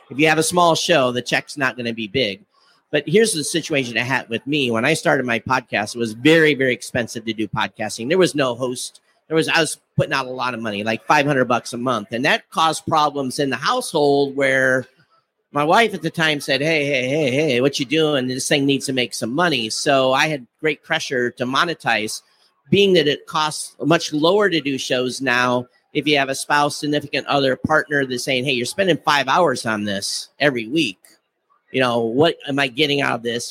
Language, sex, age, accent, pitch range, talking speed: English, male, 50-69, American, 125-155 Hz, 225 wpm